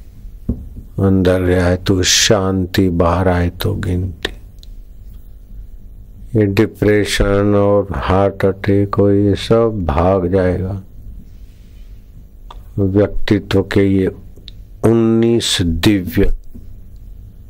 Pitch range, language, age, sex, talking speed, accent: 90-100 Hz, Hindi, 50-69, male, 80 wpm, native